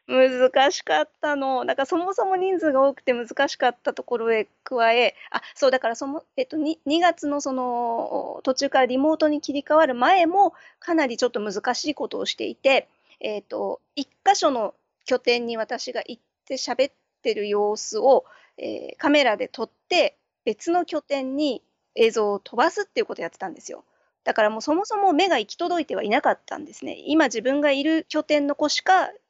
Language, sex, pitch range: English, female, 240-320 Hz